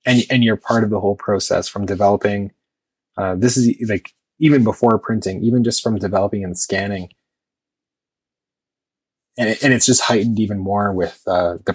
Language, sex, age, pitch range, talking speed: English, male, 20-39, 95-110 Hz, 170 wpm